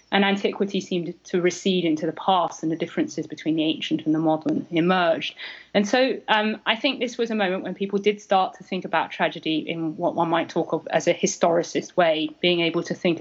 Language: English